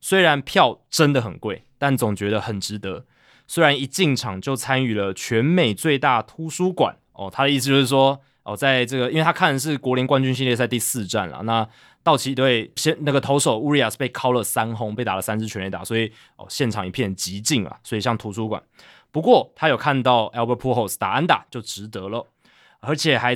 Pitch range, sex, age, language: 110-145 Hz, male, 20-39, Chinese